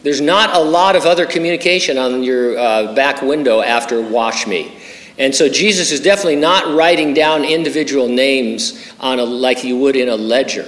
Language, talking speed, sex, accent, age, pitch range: English, 185 wpm, male, American, 50-69, 125-180 Hz